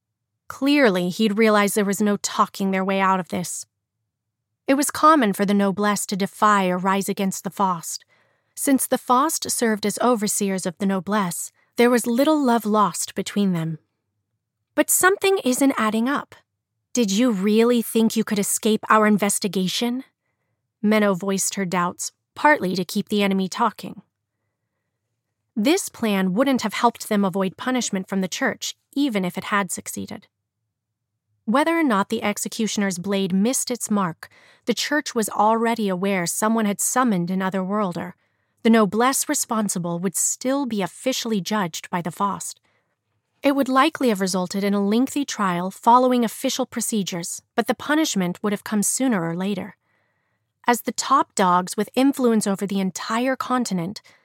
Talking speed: 155 wpm